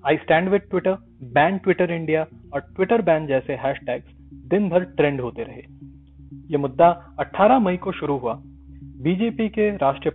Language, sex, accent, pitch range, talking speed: Hindi, male, native, 125-180 Hz, 135 wpm